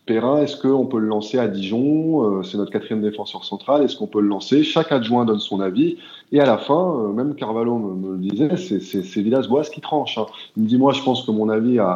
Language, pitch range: French, 105-145 Hz